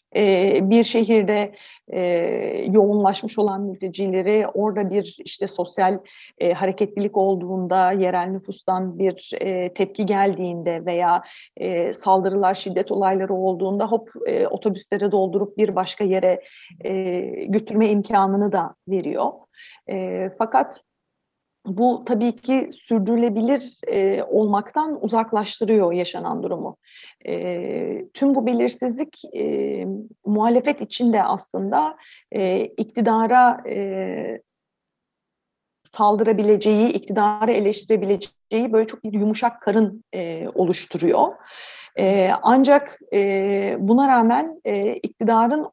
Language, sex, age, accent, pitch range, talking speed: Turkish, female, 40-59, native, 190-230 Hz, 80 wpm